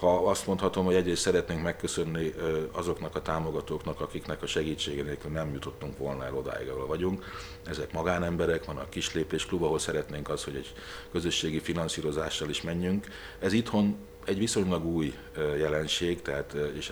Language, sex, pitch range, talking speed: Hungarian, male, 75-85 Hz, 155 wpm